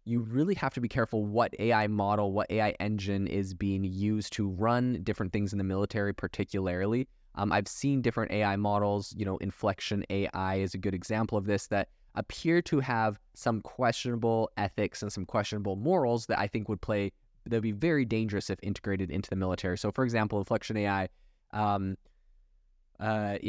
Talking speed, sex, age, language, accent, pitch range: 185 wpm, male, 20-39, English, American, 100-115 Hz